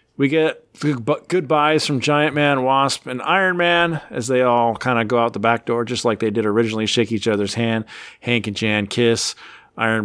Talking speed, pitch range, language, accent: 205 wpm, 105-130 Hz, English, American